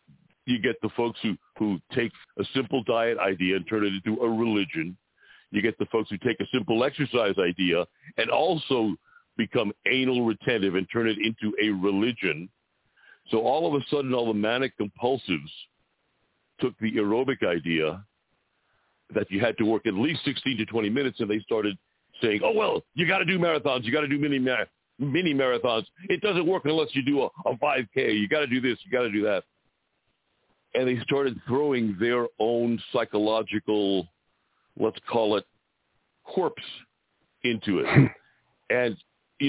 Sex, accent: male, American